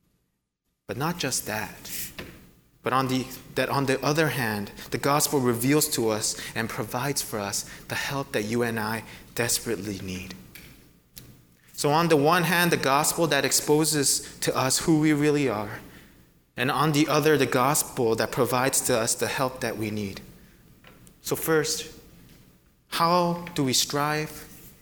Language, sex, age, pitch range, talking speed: English, male, 20-39, 120-155 Hz, 150 wpm